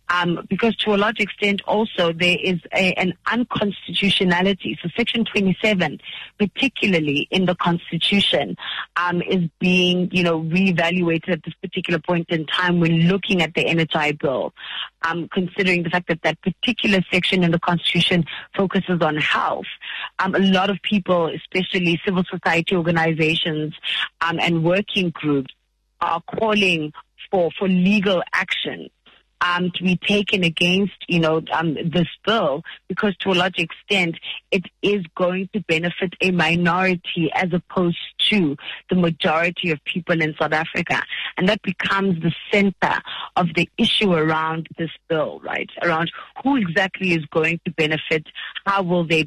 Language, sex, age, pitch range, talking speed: English, female, 30-49, 165-195 Hz, 150 wpm